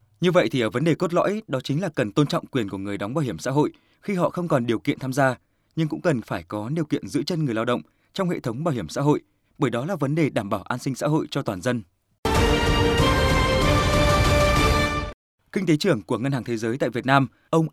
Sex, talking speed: male, 255 wpm